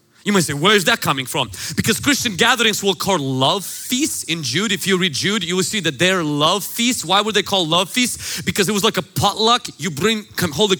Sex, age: male, 30-49